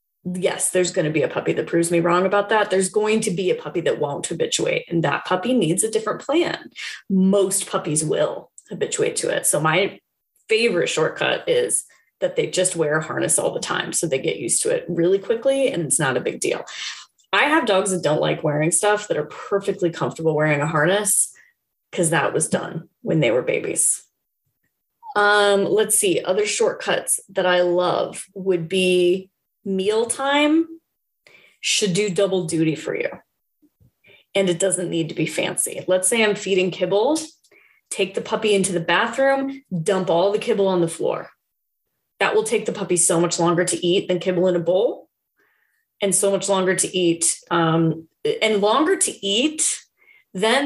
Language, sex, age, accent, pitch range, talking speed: English, female, 20-39, American, 175-235 Hz, 185 wpm